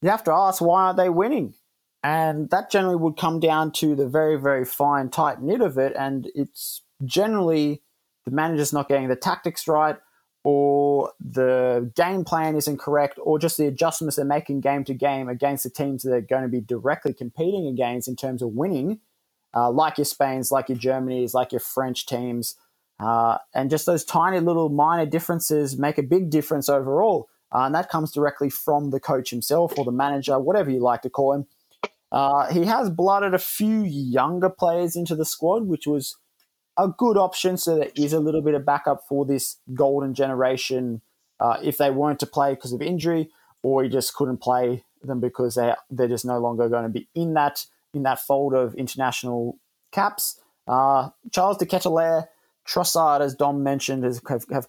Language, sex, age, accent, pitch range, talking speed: English, male, 20-39, Australian, 130-160 Hz, 190 wpm